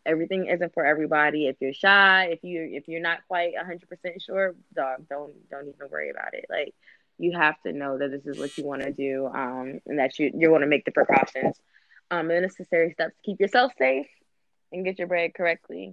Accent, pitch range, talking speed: American, 155-195 Hz, 220 wpm